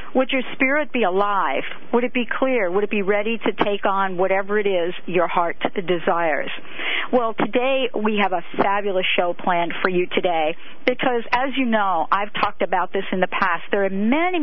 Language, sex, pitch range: English, female, 195-250 Hz